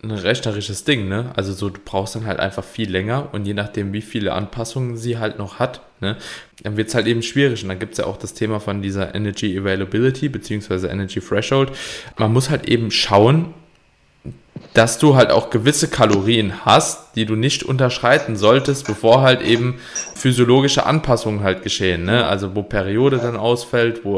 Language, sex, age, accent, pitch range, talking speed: German, male, 20-39, German, 105-130 Hz, 185 wpm